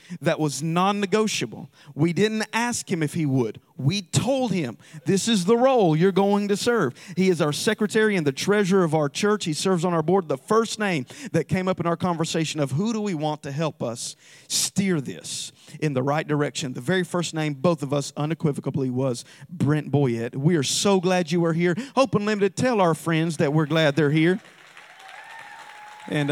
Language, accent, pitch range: English, American, 145-190 Hz